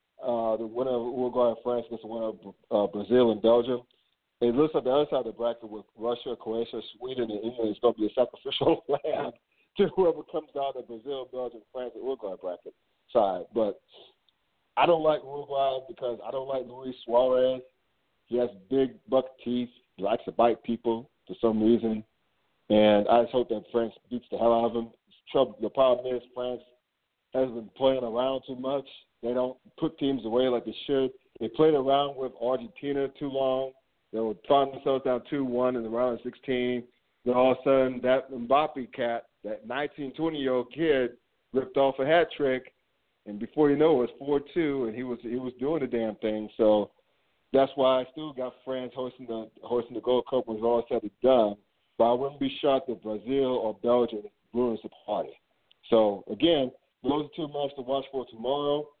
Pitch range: 115-135 Hz